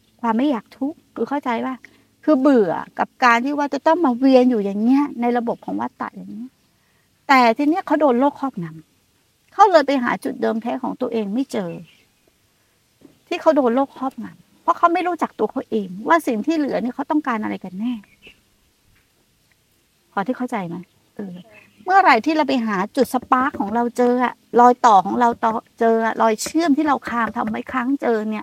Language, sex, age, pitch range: Thai, female, 60-79, 225-295 Hz